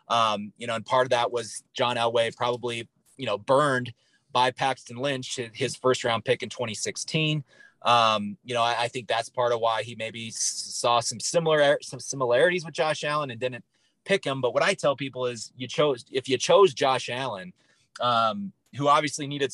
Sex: male